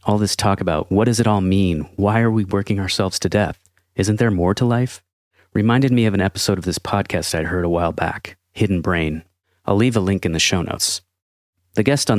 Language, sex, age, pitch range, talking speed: English, male, 30-49, 90-105 Hz, 230 wpm